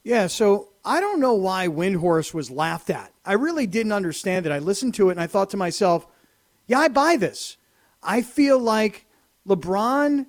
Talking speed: 185 wpm